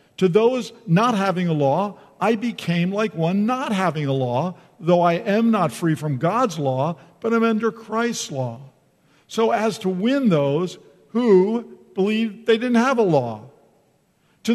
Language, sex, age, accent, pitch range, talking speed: English, male, 50-69, American, 155-215 Hz, 165 wpm